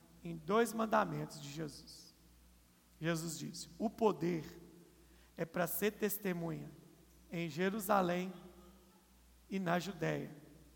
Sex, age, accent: male, 50-69, Brazilian